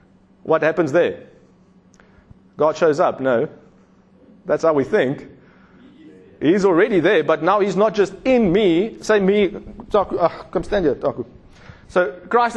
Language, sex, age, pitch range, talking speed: English, male, 30-49, 160-205 Hz, 135 wpm